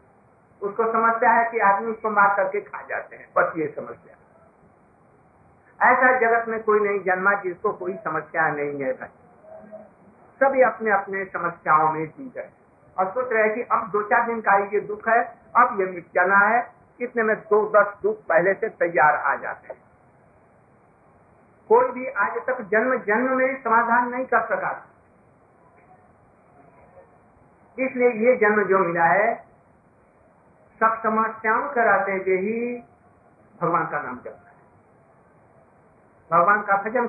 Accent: native